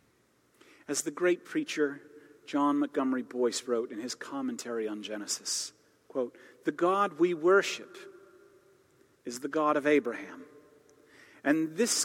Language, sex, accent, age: English, male, American, 40-59